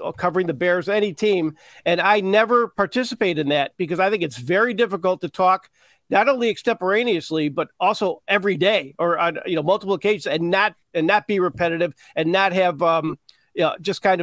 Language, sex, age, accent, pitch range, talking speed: English, male, 40-59, American, 165-200 Hz, 195 wpm